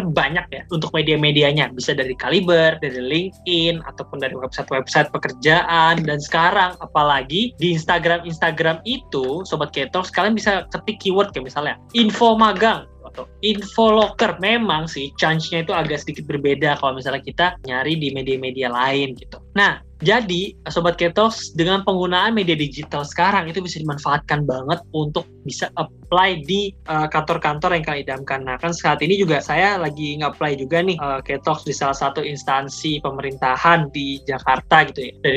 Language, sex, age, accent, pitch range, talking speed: Indonesian, male, 10-29, native, 145-185 Hz, 155 wpm